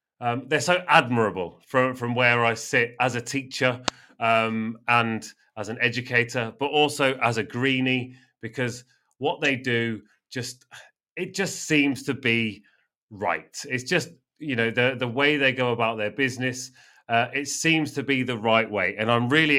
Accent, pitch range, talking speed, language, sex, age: British, 110-130 Hz, 170 wpm, English, male, 30-49